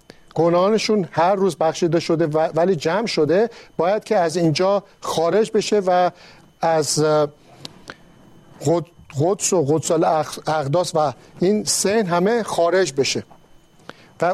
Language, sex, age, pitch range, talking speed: Persian, male, 50-69, 160-205 Hz, 115 wpm